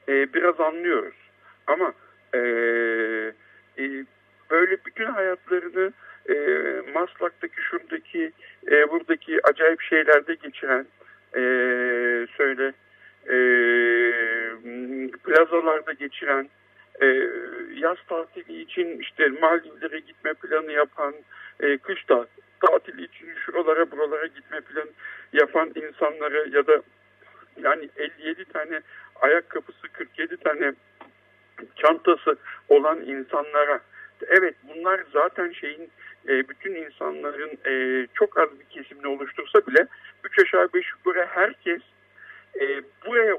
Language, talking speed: Turkish, 95 wpm